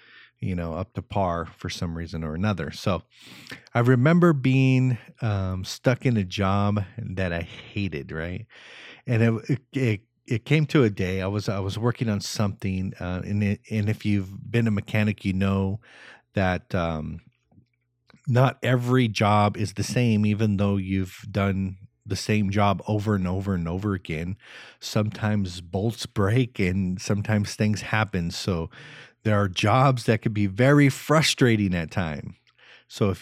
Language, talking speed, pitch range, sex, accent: English, 165 wpm, 95-115 Hz, male, American